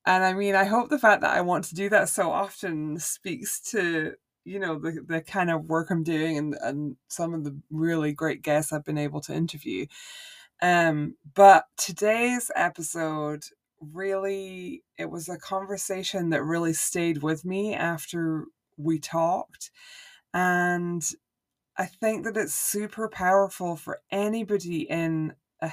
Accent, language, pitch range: British, English, 155-195 Hz